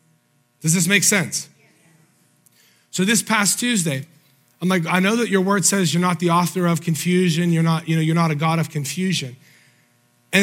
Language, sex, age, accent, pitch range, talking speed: English, male, 30-49, American, 165-210 Hz, 190 wpm